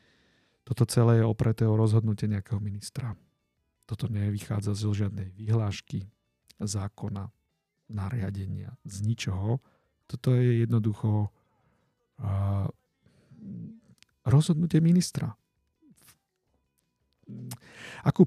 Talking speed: 80 wpm